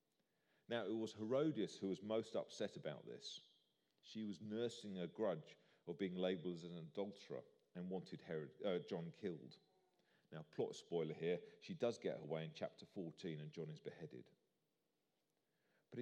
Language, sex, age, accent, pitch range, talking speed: English, male, 40-59, British, 90-130 Hz, 160 wpm